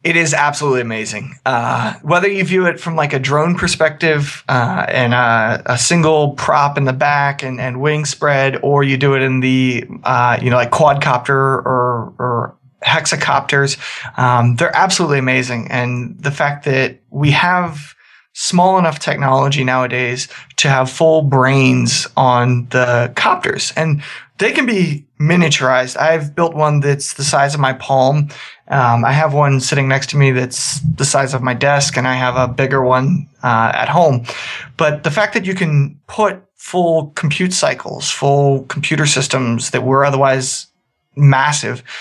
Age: 20-39